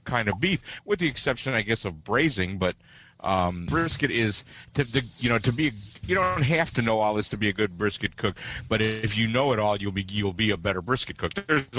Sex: male